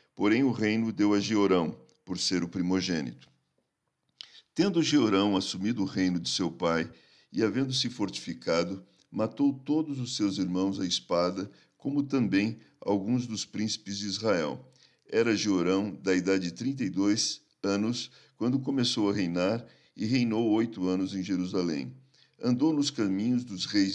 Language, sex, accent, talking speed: Portuguese, male, Brazilian, 145 wpm